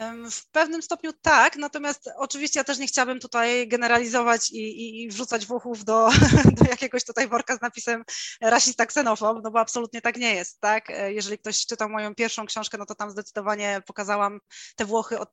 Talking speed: 185 wpm